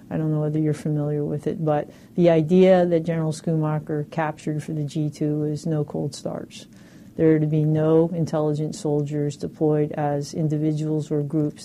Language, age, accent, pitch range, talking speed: English, 40-59, American, 150-170 Hz, 175 wpm